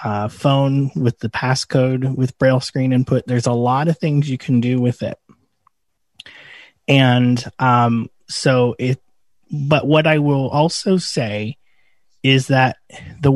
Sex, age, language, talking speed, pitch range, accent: male, 30-49, English, 145 wpm, 115-135 Hz, American